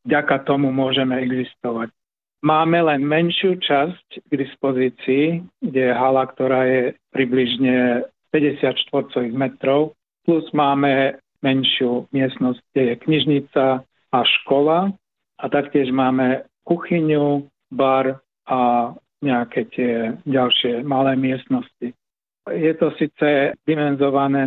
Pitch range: 125-145 Hz